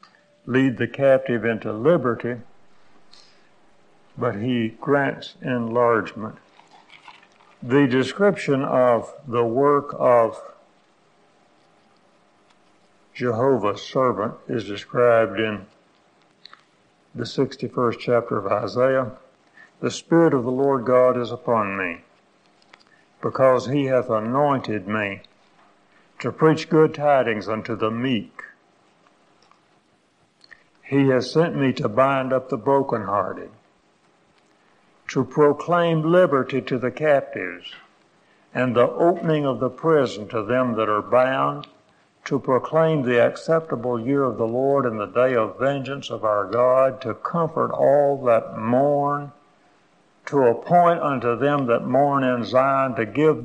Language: English